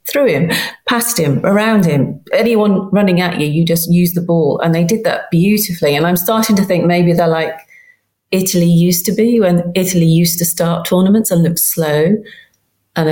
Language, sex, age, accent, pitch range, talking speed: English, female, 40-59, British, 160-205 Hz, 190 wpm